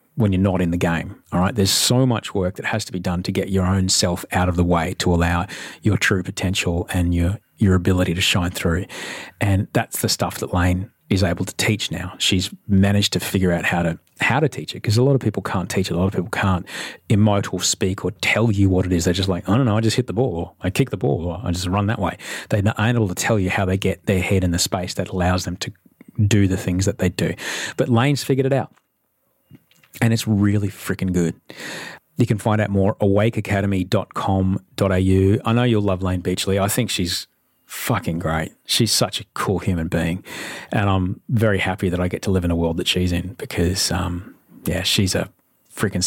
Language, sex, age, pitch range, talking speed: English, male, 30-49, 90-105 Hz, 235 wpm